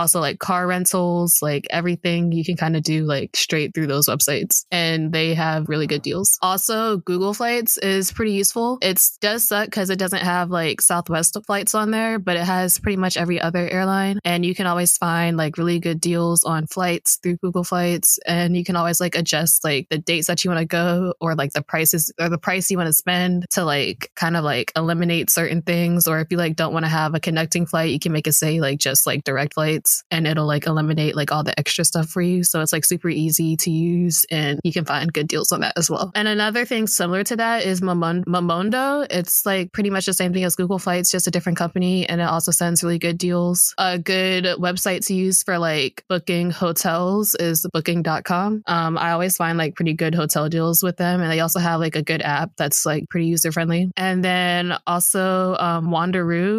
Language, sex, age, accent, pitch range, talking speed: English, female, 20-39, American, 165-185 Hz, 225 wpm